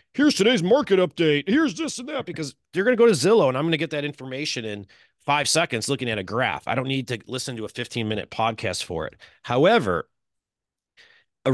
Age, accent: 30-49, American